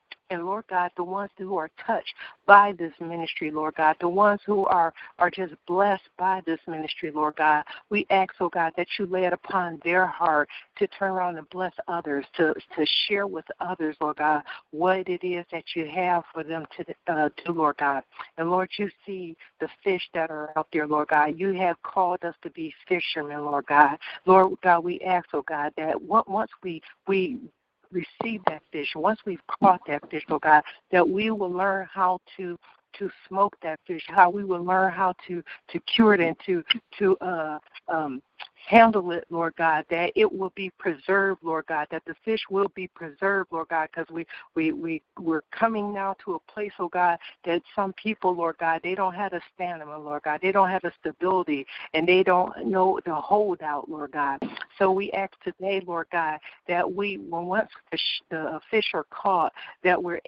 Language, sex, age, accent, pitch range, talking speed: English, female, 60-79, American, 160-195 Hz, 200 wpm